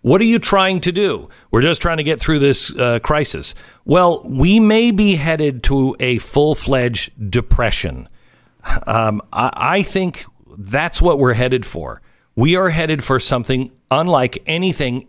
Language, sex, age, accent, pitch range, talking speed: English, male, 50-69, American, 120-170 Hz, 160 wpm